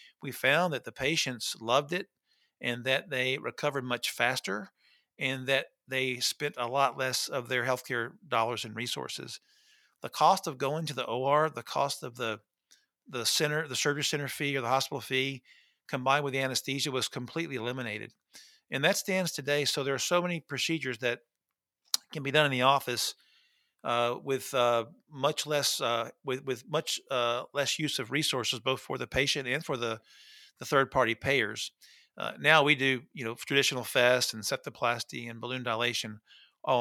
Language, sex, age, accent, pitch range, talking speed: English, male, 50-69, American, 125-145 Hz, 185 wpm